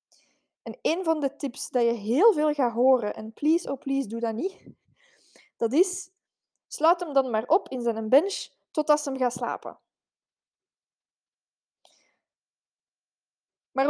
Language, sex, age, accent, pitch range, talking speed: Dutch, female, 20-39, Dutch, 245-310 Hz, 145 wpm